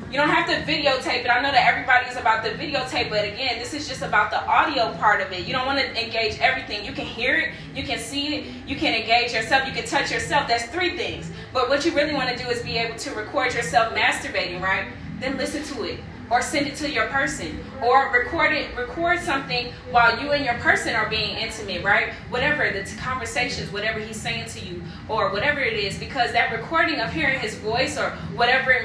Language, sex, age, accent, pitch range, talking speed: English, female, 20-39, American, 235-285 Hz, 230 wpm